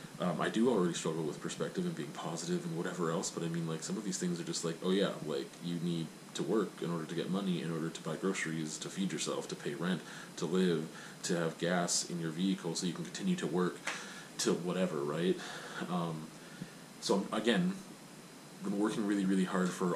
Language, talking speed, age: English, 225 wpm, 30-49